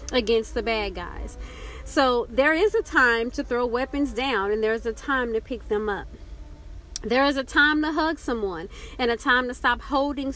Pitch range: 230-295 Hz